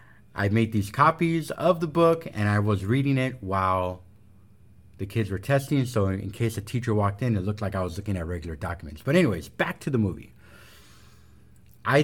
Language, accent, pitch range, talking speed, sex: English, American, 105-130 Hz, 200 wpm, male